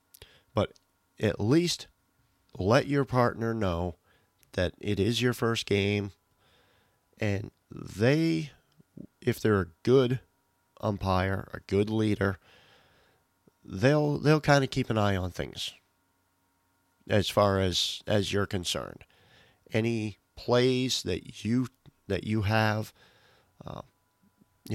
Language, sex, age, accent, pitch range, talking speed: English, male, 40-59, American, 95-120 Hz, 110 wpm